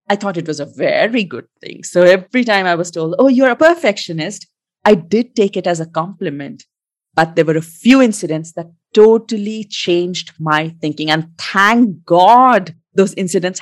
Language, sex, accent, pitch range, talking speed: English, female, Indian, 170-230 Hz, 180 wpm